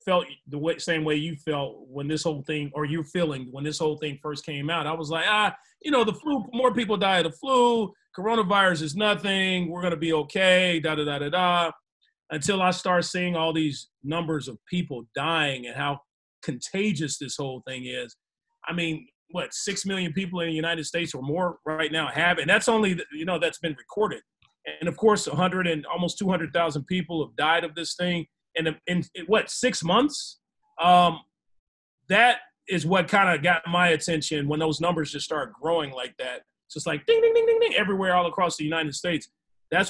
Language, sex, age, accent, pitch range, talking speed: English, male, 30-49, American, 155-200 Hz, 210 wpm